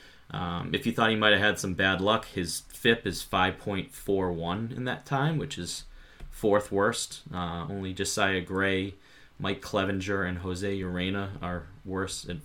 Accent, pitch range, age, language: American, 90-115 Hz, 20-39, English